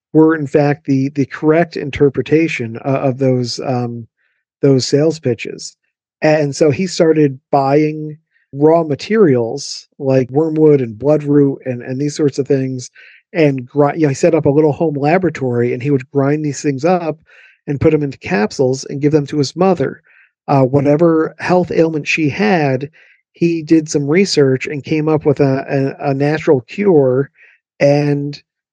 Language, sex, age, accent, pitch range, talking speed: English, male, 50-69, American, 135-155 Hz, 165 wpm